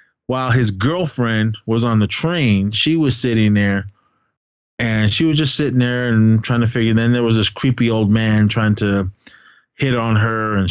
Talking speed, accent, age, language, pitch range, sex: 190 wpm, American, 30-49, English, 110-135 Hz, male